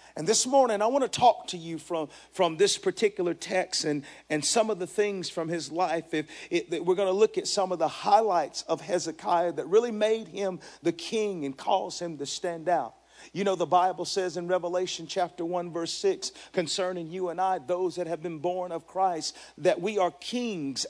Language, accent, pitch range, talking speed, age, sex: English, American, 165-210 Hz, 215 wpm, 50-69, male